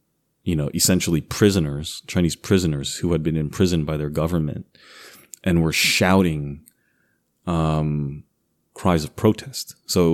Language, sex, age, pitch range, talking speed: English, male, 30-49, 80-95 Hz, 130 wpm